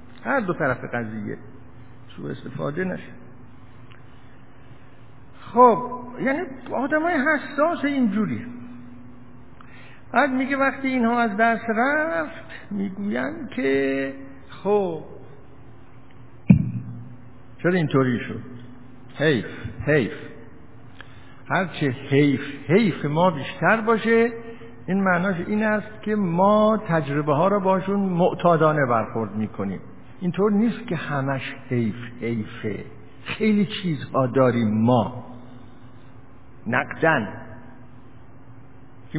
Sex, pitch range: male, 125-190 Hz